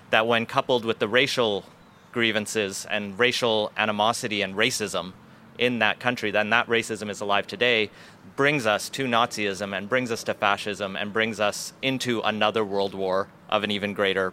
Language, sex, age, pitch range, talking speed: English, male, 30-49, 105-125 Hz, 170 wpm